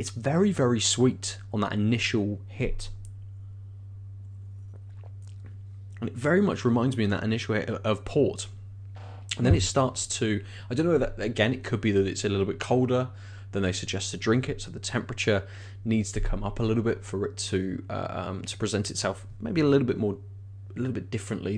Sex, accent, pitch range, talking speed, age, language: male, British, 100-115 Hz, 195 wpm, 20-39, English